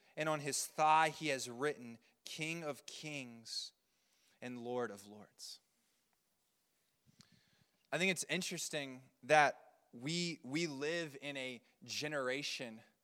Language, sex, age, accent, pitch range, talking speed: English, male, 20-39, American, 140-180 Hz, 115 wpm